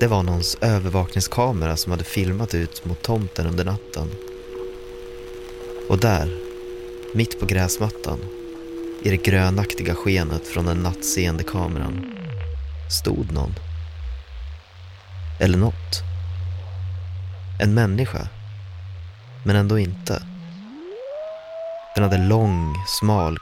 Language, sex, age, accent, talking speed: Swedish, male, 30-49, native, 95 wpm